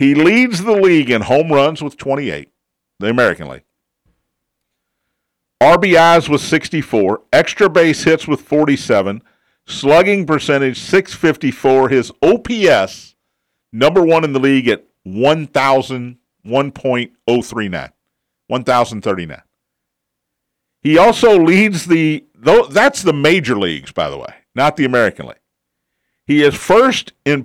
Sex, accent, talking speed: male, American, 115 wpm